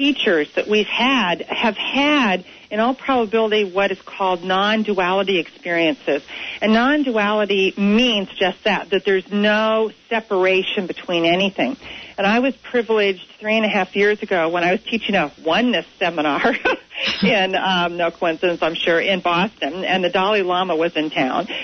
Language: English